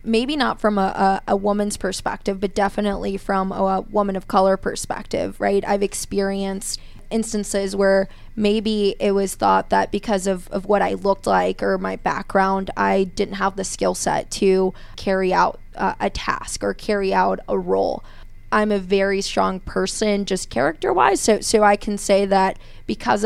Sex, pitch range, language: female, 195-210 Hz, English